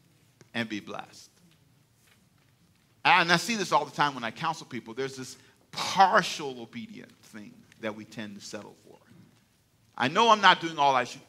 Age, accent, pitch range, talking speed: 50-69, American, 110-150 Hz, 175 wpm